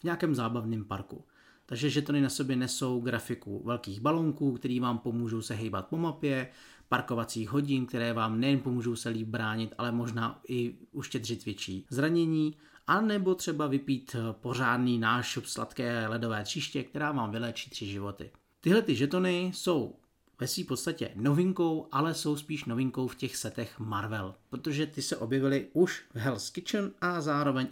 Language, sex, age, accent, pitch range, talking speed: Czech, male, 40-59, native, 115-150 Hz, 155 wpm